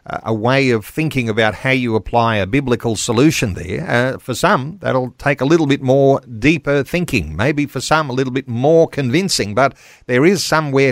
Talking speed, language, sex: 190 wpm, English, male